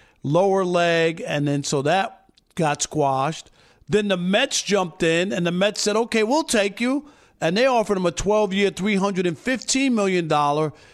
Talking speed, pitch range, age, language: 165 wpm, 150-190 Hz, 50-69, English